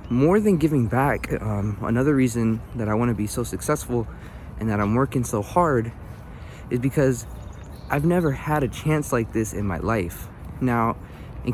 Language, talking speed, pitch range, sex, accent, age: English, 170 wpm, 105-135 Hz, male, American, 20-39